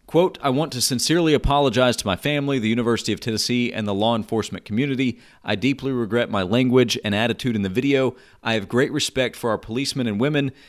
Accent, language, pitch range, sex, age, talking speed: American, English, 105-135 Hz, male, 40-59, 210 wpm